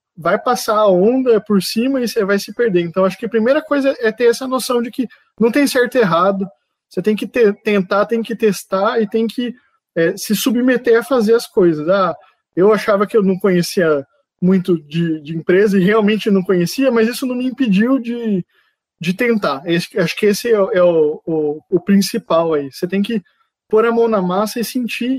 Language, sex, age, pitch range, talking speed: Portuguese, male, 20-39, 185-235 Hz, 215 wpm